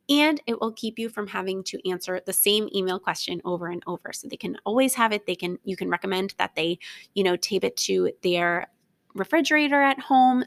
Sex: female